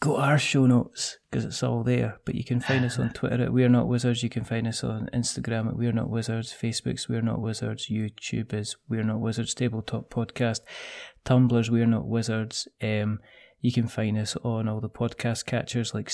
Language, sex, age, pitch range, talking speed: English, male, 20-39, 110-125 Hz, 210 wpm